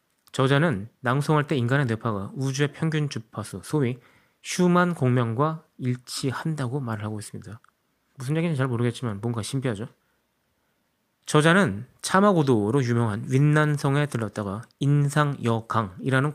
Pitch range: 115-150 Hz